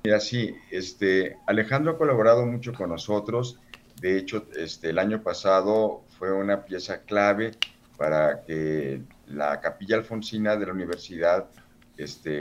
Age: 50-69